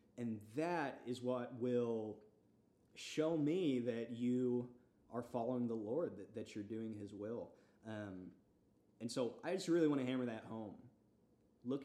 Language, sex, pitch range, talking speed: English, male, 110-130 Hz, 155 wpm